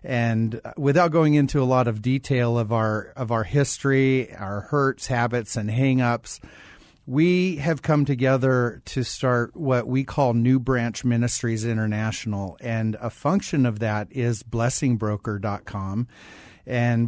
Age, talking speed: 40-59, 135 wpm